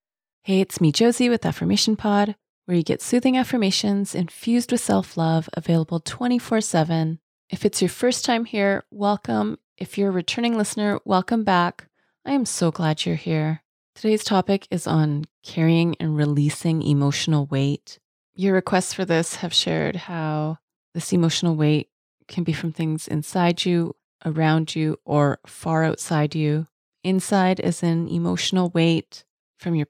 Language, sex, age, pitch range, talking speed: English, female, 30-49, 160-190 Hz, 150 wpm